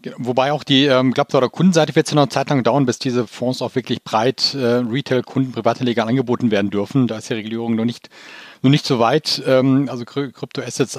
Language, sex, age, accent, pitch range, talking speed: German, male, 40-59, German, 120-145 Hz, 225 wpm